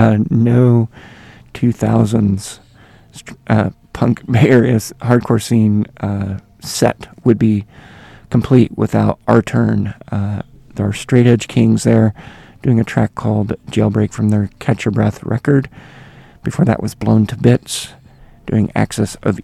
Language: English